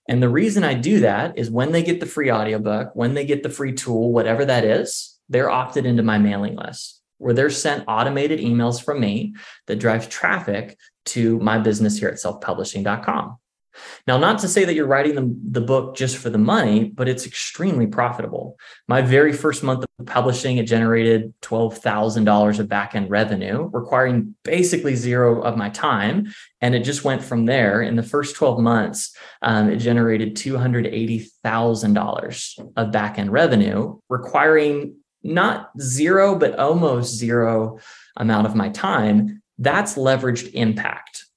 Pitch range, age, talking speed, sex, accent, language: 115-145 Hz, 20-39, 160 wpm, male, American, English